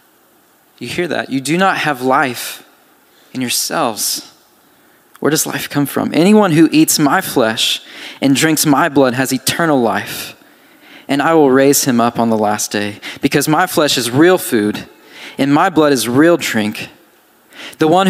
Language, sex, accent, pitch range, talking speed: English, male, American, 120-155 Hz, 170 wpm